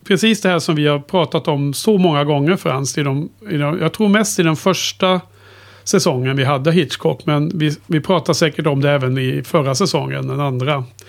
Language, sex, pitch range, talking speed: Swedish, male, 140-175 Hz, 200 wpm